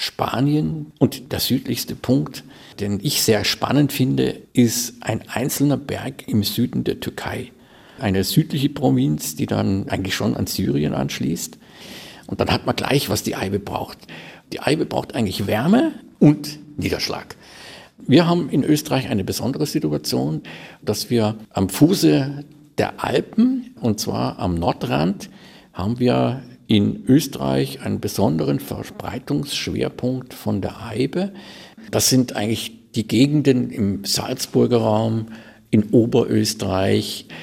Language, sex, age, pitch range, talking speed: German, male, 50-69, 105-140 Hz, 130 wpm